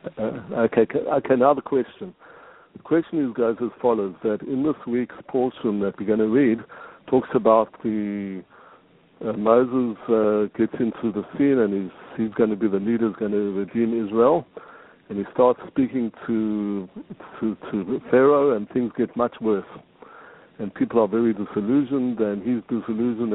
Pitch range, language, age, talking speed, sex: 105-125 Hz, English, 60-79, 170 wpm, male